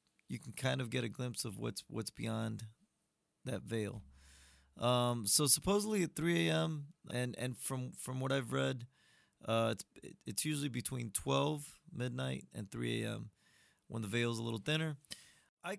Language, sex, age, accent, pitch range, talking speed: English, male, 30-49, American, 110-145 Hz, 165 wpm